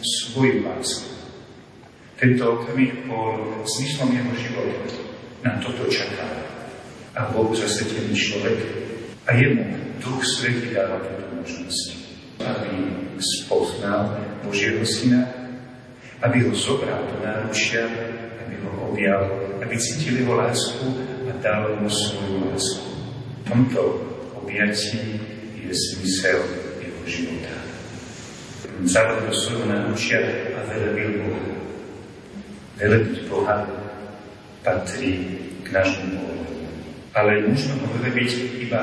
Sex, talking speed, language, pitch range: male, 105 wpm, Slovak, 105-125 Hz